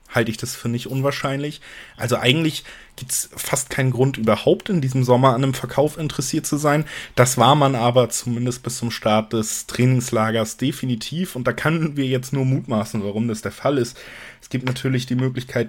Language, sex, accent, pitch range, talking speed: German, male, German, 115-135 Hz, 195 wpm